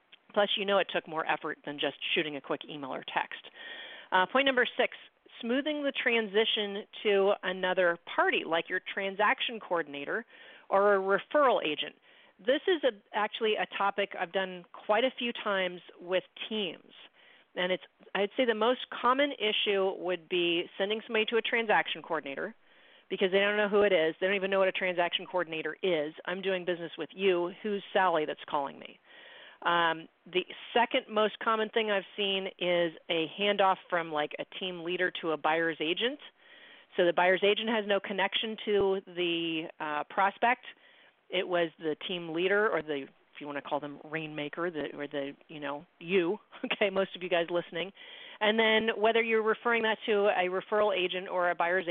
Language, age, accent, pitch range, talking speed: English, 40-59, American, 175-220 Hz, 185 wpm